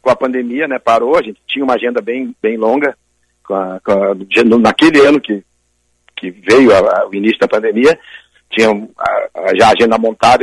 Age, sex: 60-79, male